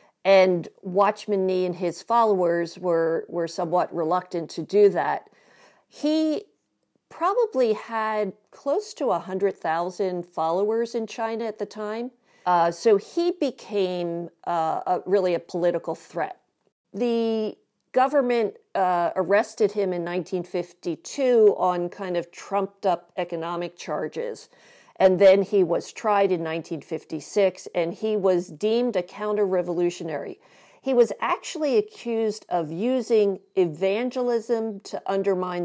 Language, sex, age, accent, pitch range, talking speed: English, female, 50-69, American, 170-220 Hz, 120 wpm